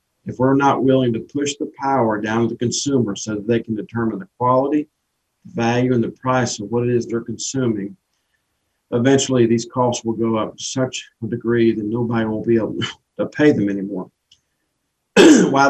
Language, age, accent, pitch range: English, 50-69, American, 110-125 Hz